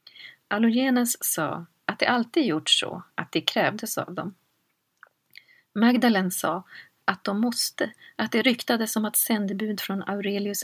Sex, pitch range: female, 185-220 Hz